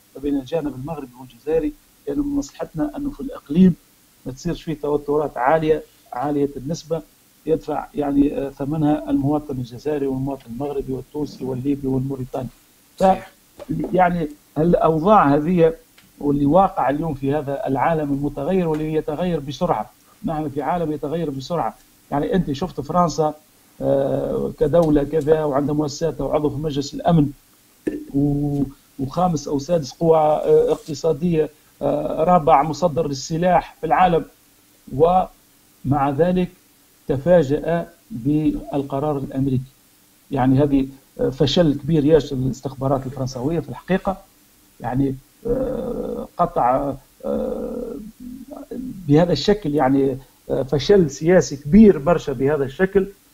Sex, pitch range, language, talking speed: male, 140-170 Hz, Arabic, 105 wpm